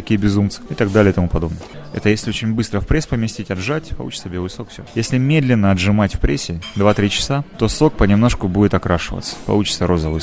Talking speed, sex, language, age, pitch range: 200 wpm, male, Russian, 20-39, 90-115 Hz